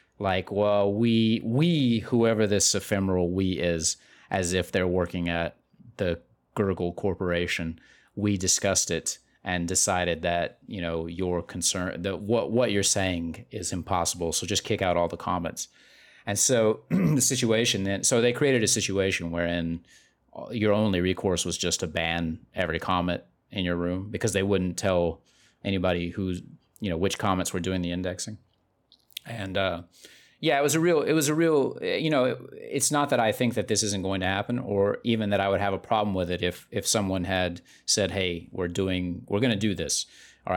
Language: English